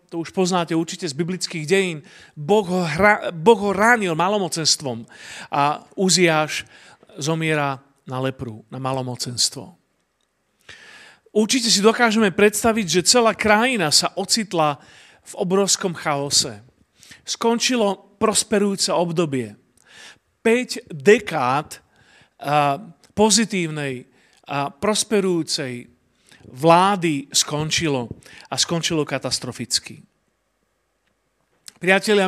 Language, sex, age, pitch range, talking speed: Slovak, male, 40-59, 155-205 Hz, 85 wpm